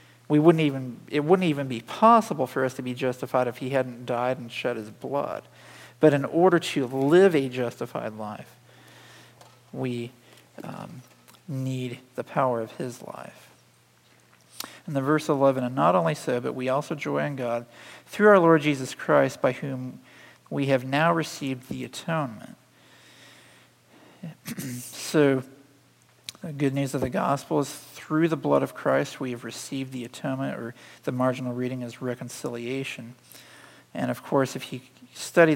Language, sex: English, male